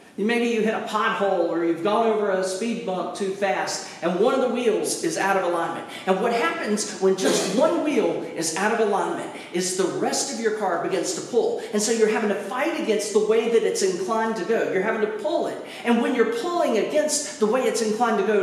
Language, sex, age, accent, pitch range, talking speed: English, male, 40-59, American, 170-235 Hz, 240 wpm